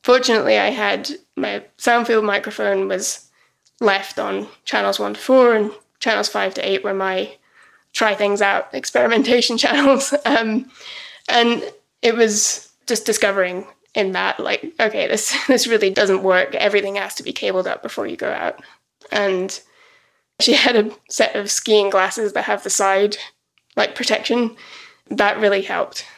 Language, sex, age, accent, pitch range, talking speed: English, female, 20-39, British, 200-240 Hz, 150 wpm